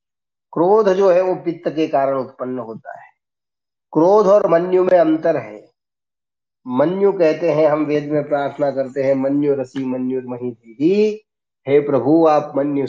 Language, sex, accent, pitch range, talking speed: Hindi, male, native, 130-170 Hz, 155 wpm